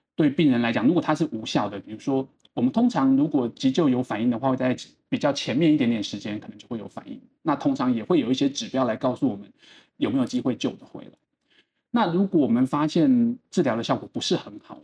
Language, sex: Chinese, male